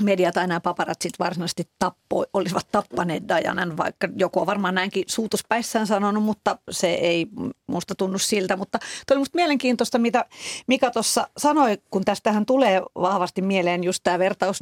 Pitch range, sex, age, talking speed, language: 180-230 Hz, female, 40-59, 155 wpm, Finnish